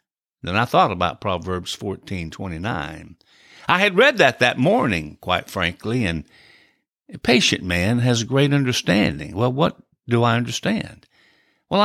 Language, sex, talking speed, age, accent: English, male, 145 wpm, 60-79, American